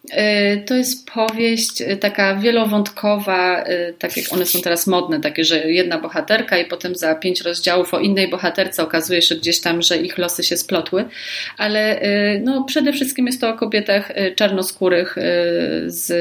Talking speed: 150 wpm